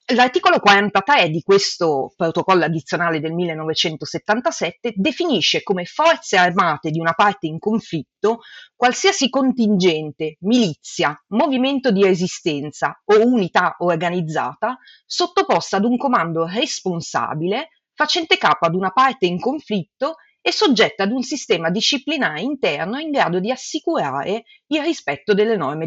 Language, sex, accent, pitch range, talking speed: Italian, female, native, 170-245 Hz, 125 wpm